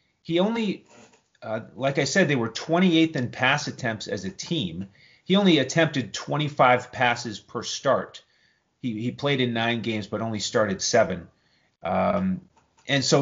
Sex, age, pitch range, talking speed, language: male, 30-49, 115-155 Hz, 160 wpm, English